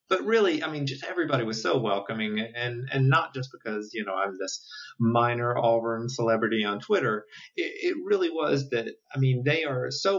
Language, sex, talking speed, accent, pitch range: English, male, 195 wpm, American, 115-140 Hz